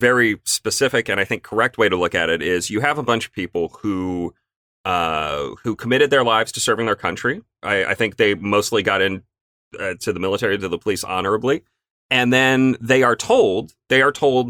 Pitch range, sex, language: 105-150 Hz, male, English